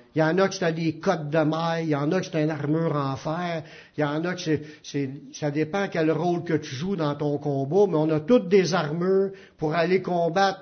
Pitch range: 150-195 Hz